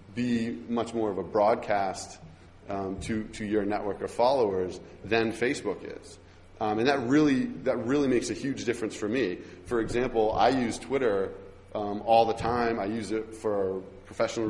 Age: 30-49